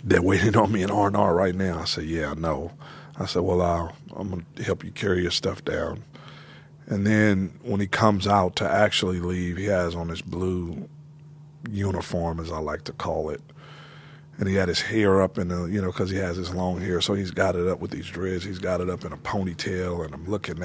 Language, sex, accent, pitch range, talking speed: English, male, American, 95-145 Hz, 240 wpm